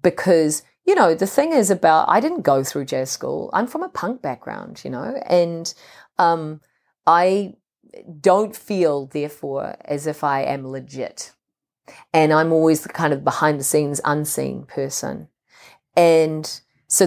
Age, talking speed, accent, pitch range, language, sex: 40-59, 150 wpm, Australian, 140-180 Hz, English, female